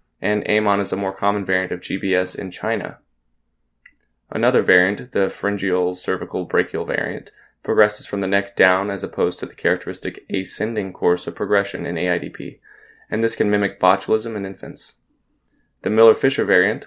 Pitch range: 90-105 Hz